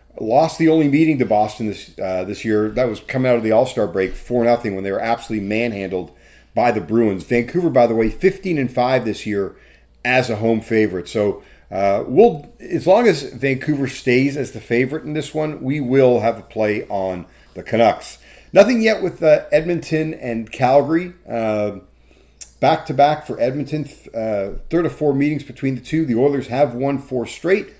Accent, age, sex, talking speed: American, 40-59, male, 190 wpm